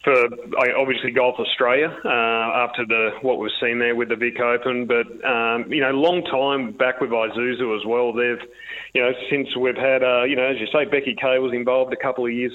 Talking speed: 220 wpm